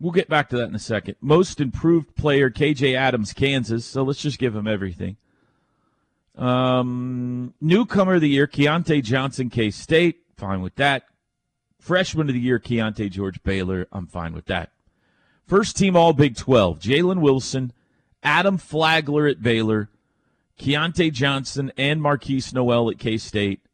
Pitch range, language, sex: 110-150 Hz, English, male